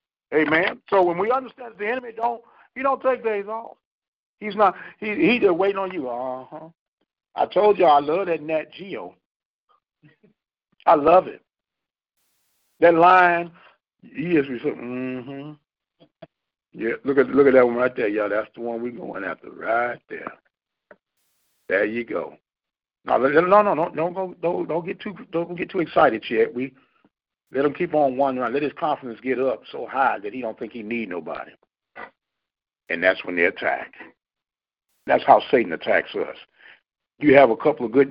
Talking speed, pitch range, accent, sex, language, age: 180 wpm, 135-210 Hz, American, male, English, 50-69